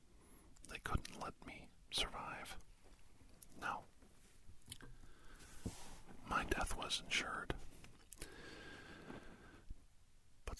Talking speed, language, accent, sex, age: 55 wpm, English, American, male, 50-69